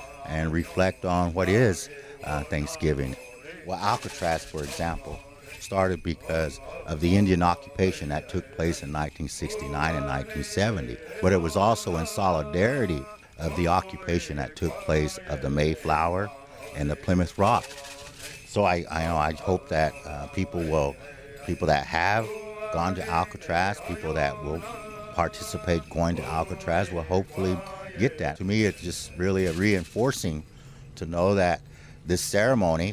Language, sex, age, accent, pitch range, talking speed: English, male, 60-79, American, 80-100 Hz, 150 wpm